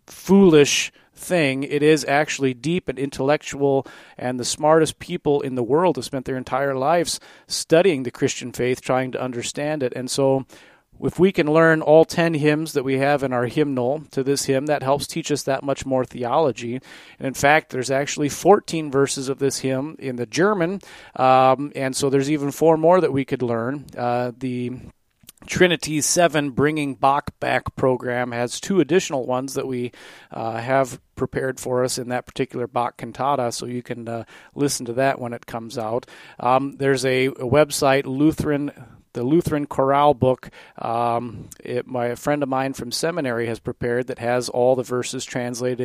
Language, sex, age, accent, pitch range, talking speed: English, male, 40-59, American, 125-150 Hz, 180 wpm